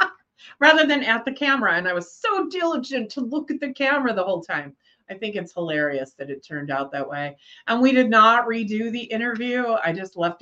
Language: English